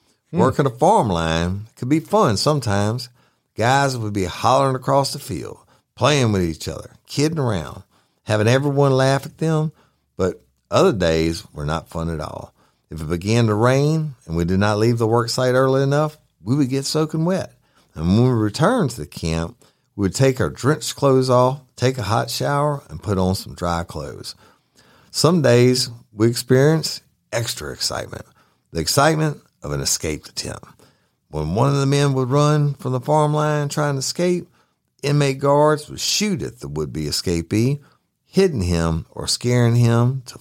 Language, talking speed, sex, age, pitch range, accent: English, 175 wpm, male, 50-69, 95-140 Hz, American